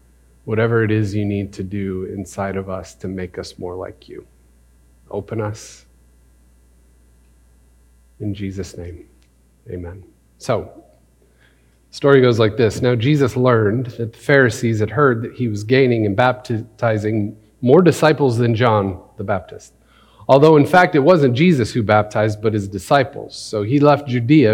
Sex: male